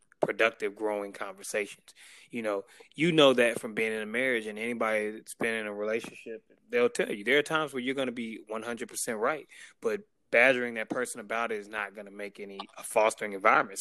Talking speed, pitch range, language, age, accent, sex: 205 wpm, 110-130 Hz, English, 20-39, American, male